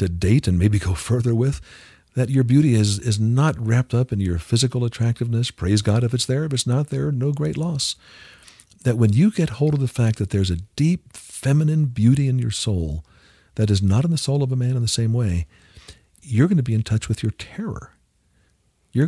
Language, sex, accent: English, male, American